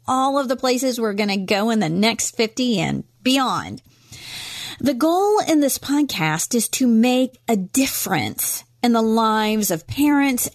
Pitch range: 185-285 Hz